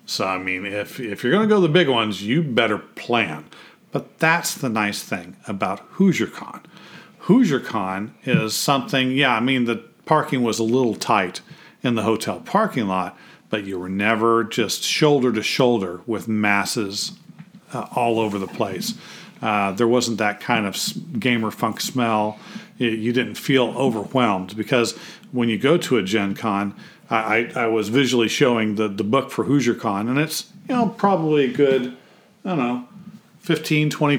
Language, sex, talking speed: English, male, 170 wpm